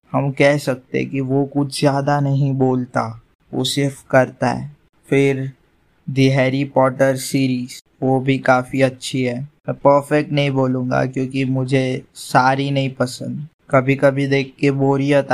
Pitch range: 130-145 Hz